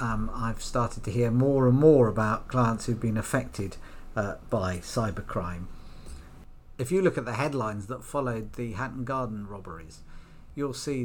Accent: British